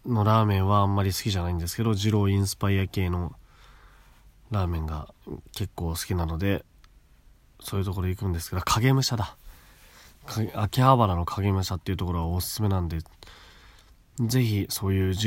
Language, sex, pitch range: Japanese, male, 85-110 Hz